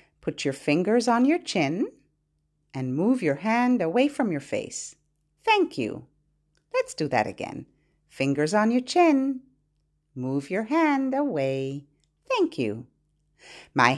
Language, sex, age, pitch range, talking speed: English, female, 50-69, 160-235 Hz, 135 wpm